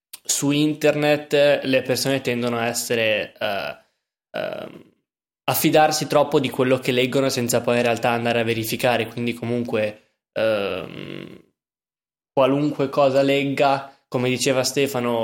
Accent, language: native, Italian